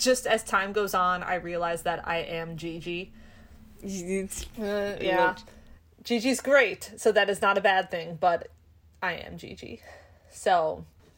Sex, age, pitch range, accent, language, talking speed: female, 20-39, 165-215 Hz, American, English, 140 wpm